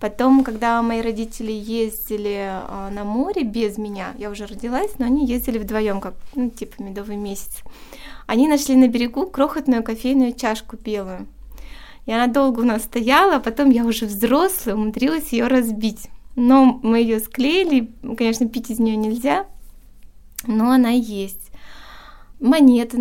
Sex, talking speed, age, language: female, 150 wpm, 20-39, Russian